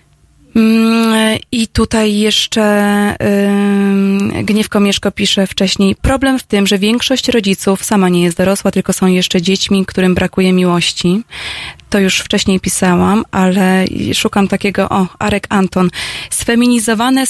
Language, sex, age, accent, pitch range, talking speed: Polish, female, 20-39, native, 190-215 Hz, 120 wpm